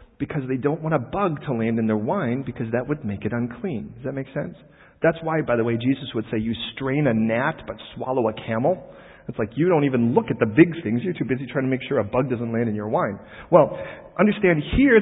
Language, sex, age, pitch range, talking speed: English, male, 40-59, 125-190 Hz, 255 wpm